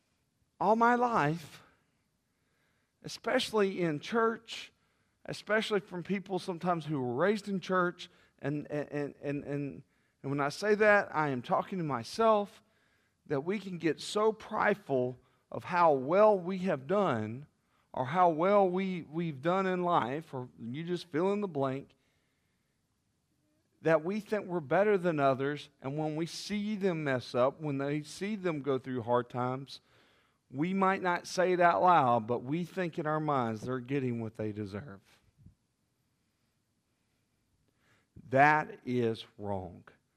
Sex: male